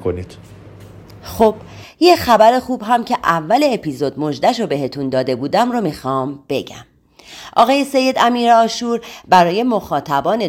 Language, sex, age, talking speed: Persian, female, 30-49, 125 wpm